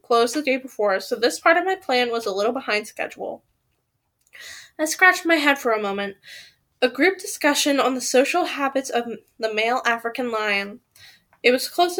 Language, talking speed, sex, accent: English, 185 wpm, female, American